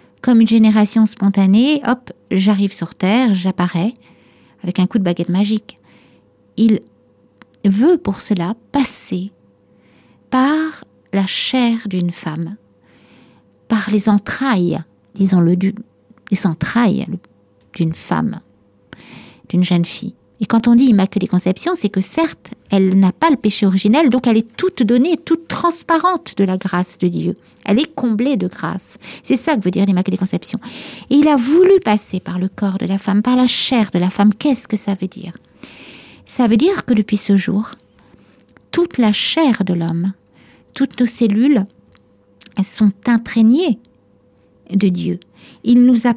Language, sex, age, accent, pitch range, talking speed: French, female, 50-69, French, 190-245 Hz, 155 wpm